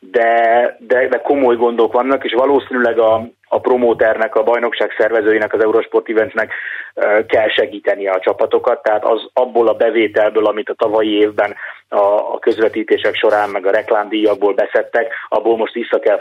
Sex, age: male, 30-49